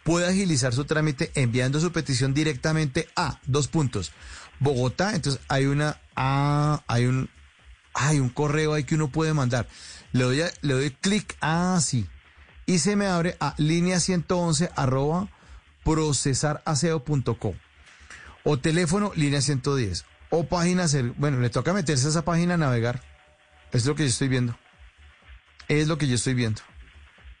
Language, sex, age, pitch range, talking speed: Spanish, male, 40-59, 120-160 Hz, 150 wpm